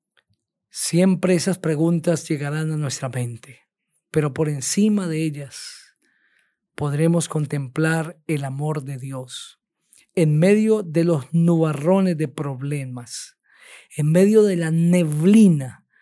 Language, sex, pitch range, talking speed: Spanish, male, 145-175 Hz, 110 wpm